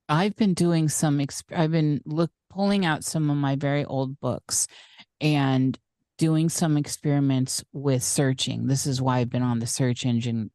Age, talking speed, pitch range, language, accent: 40-59, 170 wpm, 125-155 Hz, English, American